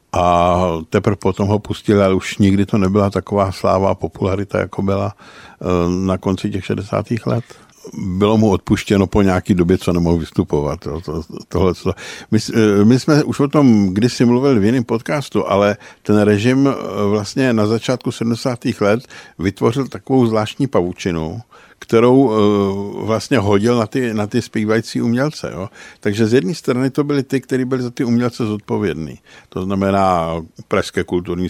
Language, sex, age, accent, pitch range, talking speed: Czech, male, 60-79, native, 95-115 Hz, 150 wpm